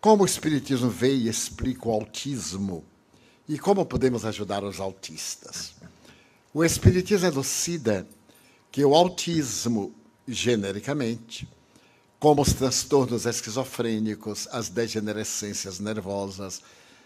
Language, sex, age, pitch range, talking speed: Portuguese, male, 60-79, 105-140 Hz, 100 wpm